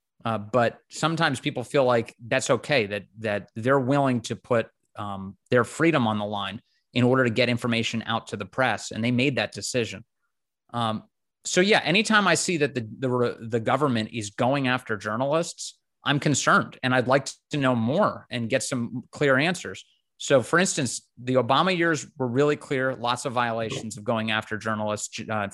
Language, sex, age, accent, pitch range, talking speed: English, male, 30-49, American, 110-130 Hz, 185 wpm